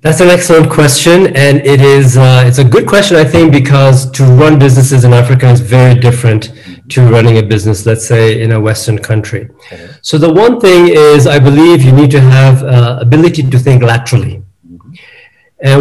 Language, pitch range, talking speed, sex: English, 125-150 Hz, 190 wpm, male